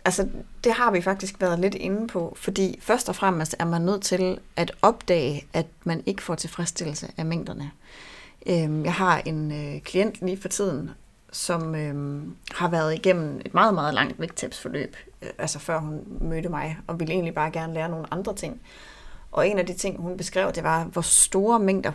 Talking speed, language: 185 wpm, Danish